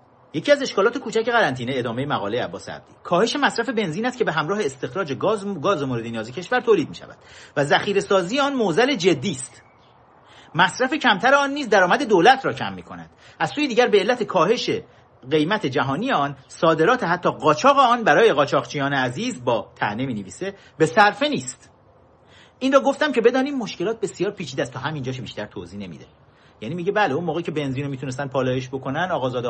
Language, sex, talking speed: Persian, male, 175 wpm